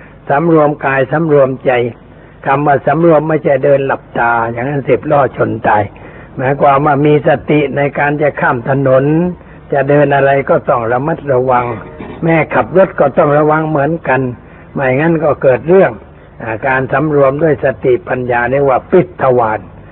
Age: 60-79